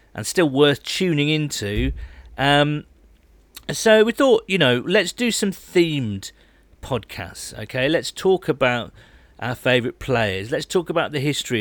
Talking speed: 145 wpm